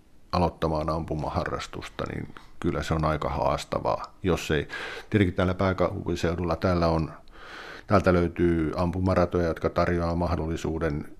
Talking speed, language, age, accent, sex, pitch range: 105 wpm, Finnish, 50-69, native, male, 80-90 Hz